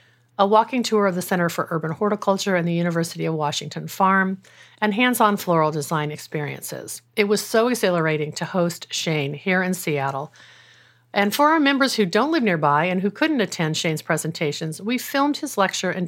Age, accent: 50-69, American